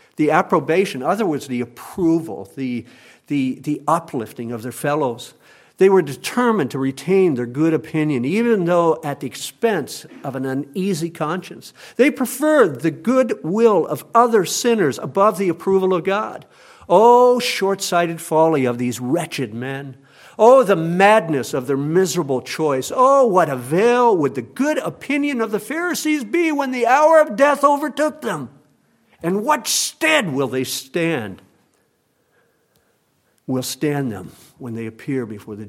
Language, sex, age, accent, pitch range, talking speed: English, male, 50-69, American, 125-190 Hz, 150 wpm